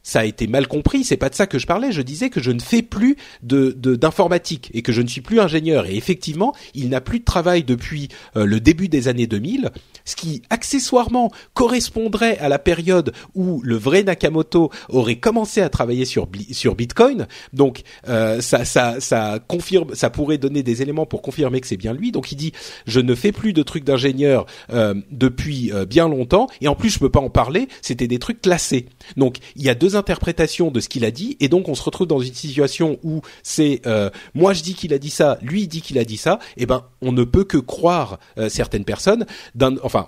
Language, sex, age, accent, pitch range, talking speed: French, male, 40-59, French, 125-180 Hz, 230 wpm